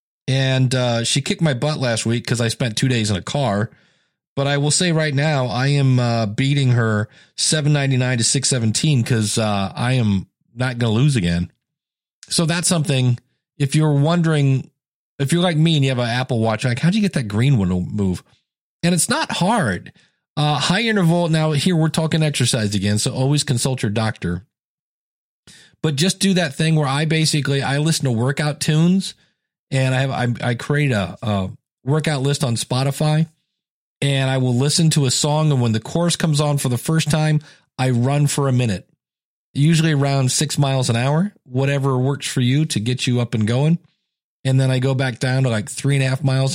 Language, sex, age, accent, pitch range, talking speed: English, male, 40-59, American, 125-155 Hz, 200 wpm